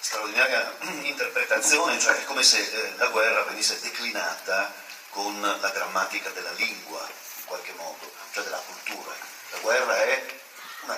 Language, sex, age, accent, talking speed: Italian, male, 40-59, native, 135 wpm